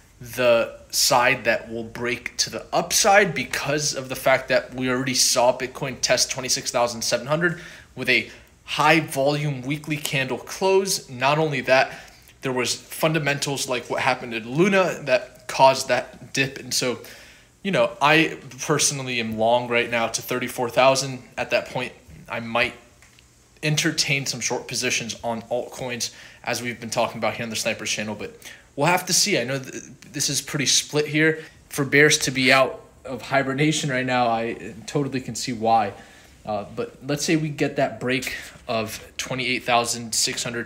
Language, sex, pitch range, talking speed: English, male, 120-145 Hz, 170 wpm